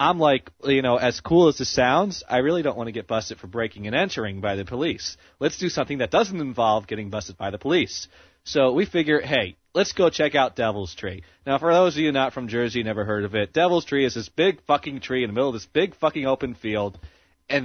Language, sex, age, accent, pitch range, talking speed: English, male, 30-49, American, 100-150 Hz, 250 wpm